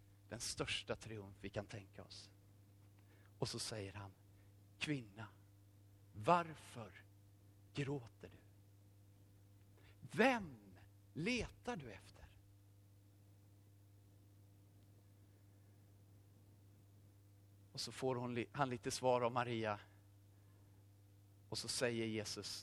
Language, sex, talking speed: Swedish, male, 85 wpm